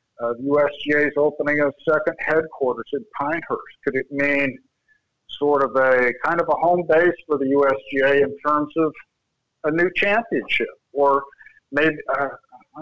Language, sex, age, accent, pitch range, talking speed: English, male, 50-69, American, 135-180 Hz, 150 wpm